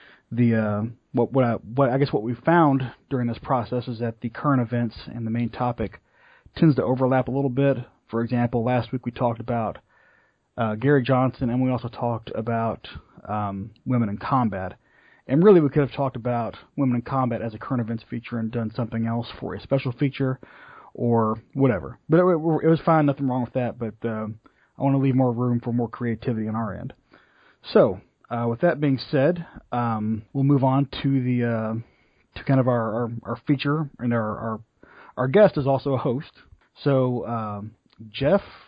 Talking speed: 200 wpm